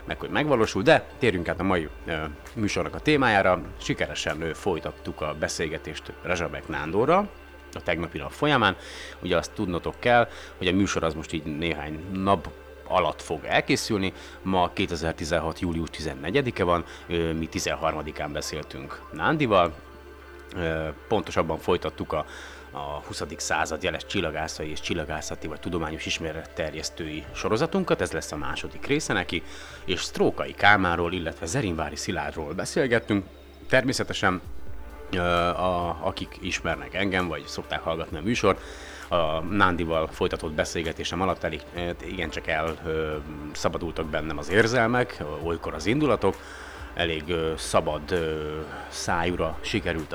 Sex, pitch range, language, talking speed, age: male, 75-95 Hz, Hungarian, 125 wpm, 30-49